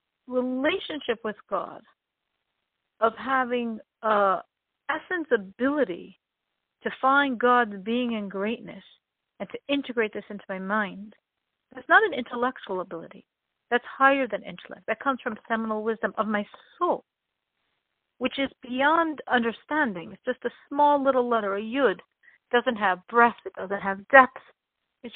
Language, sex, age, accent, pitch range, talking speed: English, female, 50-69, American, 205-270 Hz, 140 wpm